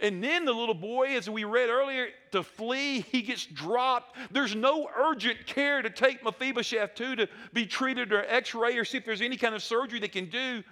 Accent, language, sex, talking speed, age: American, English, male, 215 wpm, 50-69